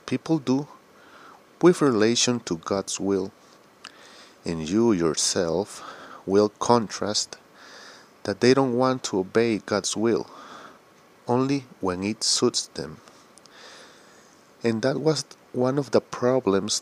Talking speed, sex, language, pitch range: 115 wpm, male, Spanish, 100-125 Hz